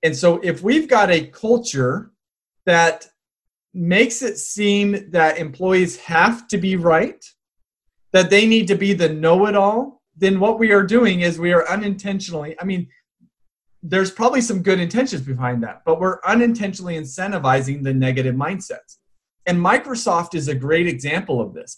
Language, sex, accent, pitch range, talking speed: English, male, American, 150-200 Hz, 155 wpm